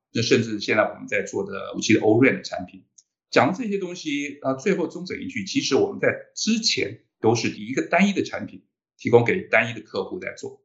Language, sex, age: Chinese, male, 50-69